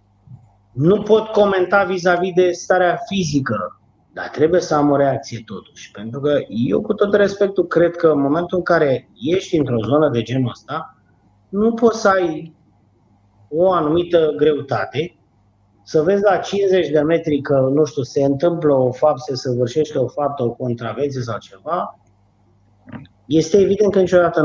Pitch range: 120-170 Hz